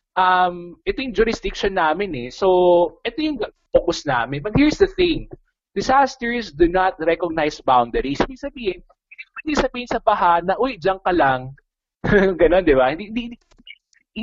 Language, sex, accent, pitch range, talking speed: Filipino, male, native, 140-215 Hz, 150 wpm